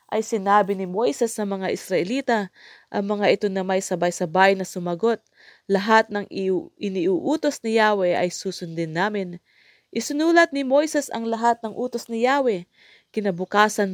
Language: English